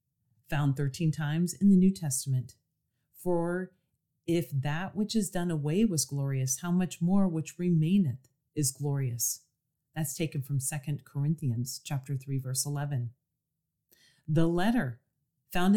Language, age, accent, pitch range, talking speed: English, 40-59, American, 135-180 Hz, 130 wpm